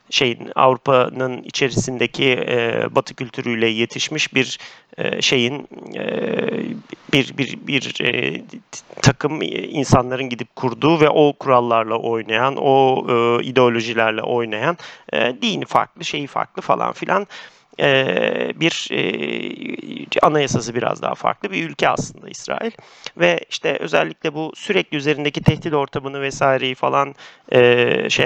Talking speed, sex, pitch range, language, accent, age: 120 wpm, male, 120-140 Hz, Turkish, native, 40-59